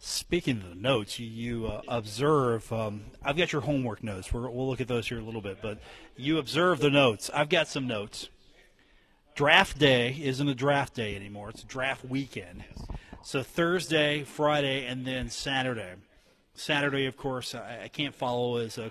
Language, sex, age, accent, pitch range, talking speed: English, male, 40-59, American, 115-135 Hz, 190 wpm